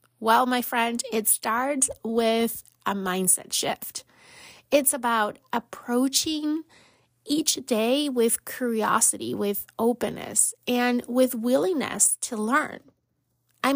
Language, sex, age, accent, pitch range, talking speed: English, female, 30-49, American, 215-255 Hz, 105 wpm